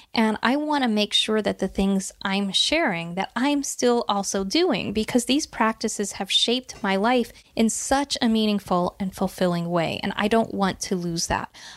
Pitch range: 195-240 Hz